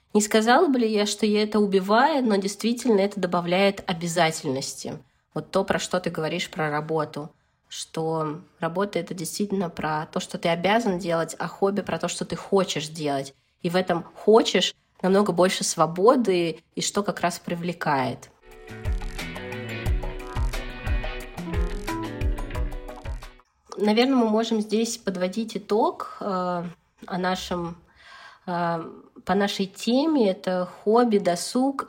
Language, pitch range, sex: Russian, 170-205 Hz, female